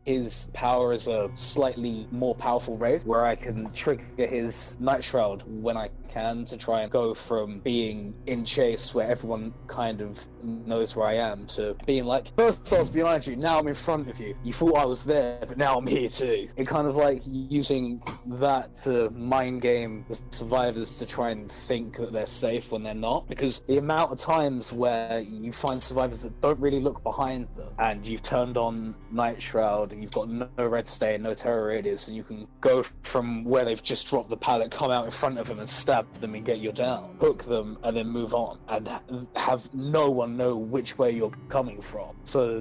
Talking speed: 210 wpm